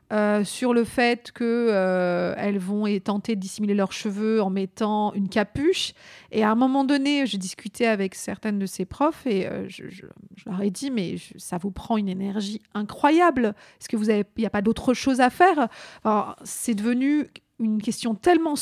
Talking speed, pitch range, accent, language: 195 wpm, 200-250 Hz, French, French